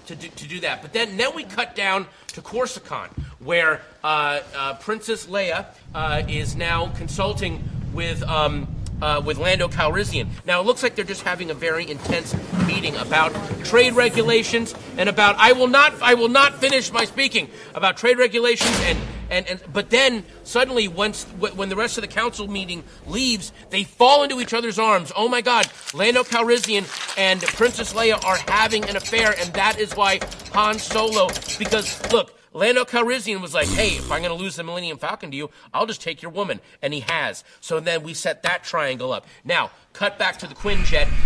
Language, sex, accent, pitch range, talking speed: English, male, American, 170-235 Hz, 195 wpm